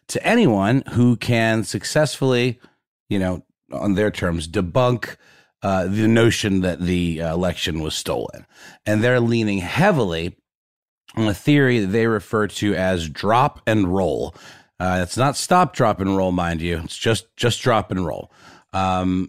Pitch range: 90-120 Hz